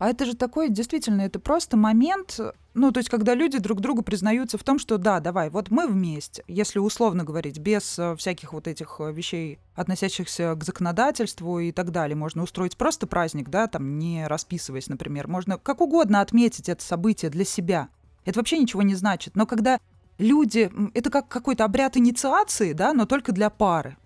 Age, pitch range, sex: 20-39, 185-245 Hz, female